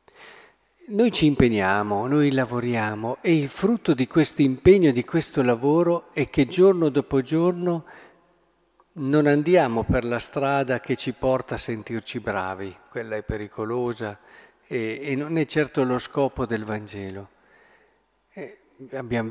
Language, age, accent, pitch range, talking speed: Italian, 50-69, native, 120-160 Hz, 135 wpm